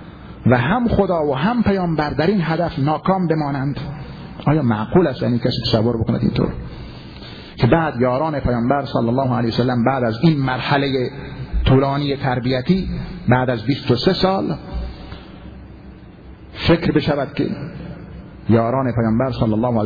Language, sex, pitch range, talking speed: Persian, male, 125-165 Hz, 140 wpm